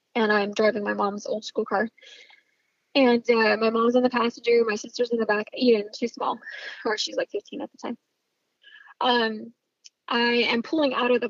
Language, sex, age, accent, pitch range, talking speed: English, female, 10-29, American, 220-265 Hz, 195 wpm